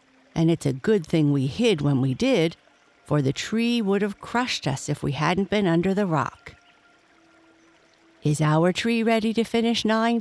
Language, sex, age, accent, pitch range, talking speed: English, female, 60-79, American, 150-215 Hz, 180 wpm